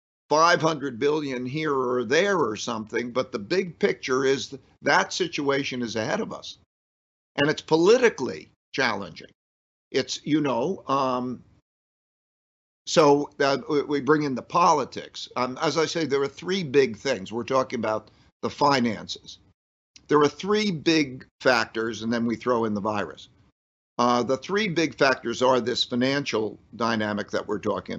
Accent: American